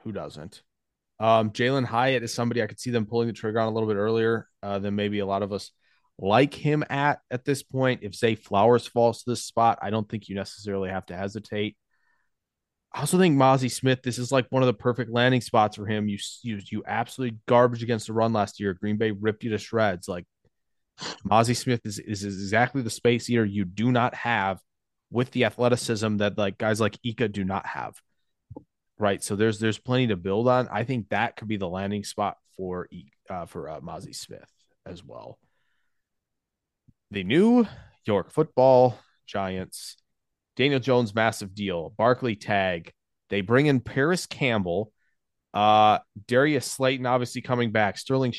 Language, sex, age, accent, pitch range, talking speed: English, male, 20-39, American, 105-125 Hz, 185 wpm